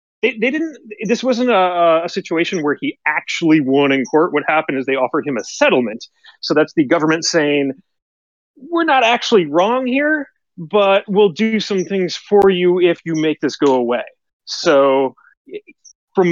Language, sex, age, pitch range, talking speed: English, male, 30-49, 140-195 Hz, 175 wpm